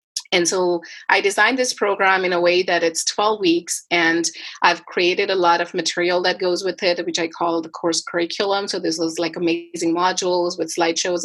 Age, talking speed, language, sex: 30-49, 205 wpm, English, female